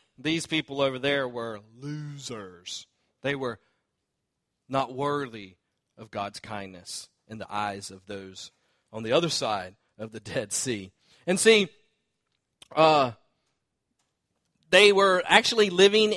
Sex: male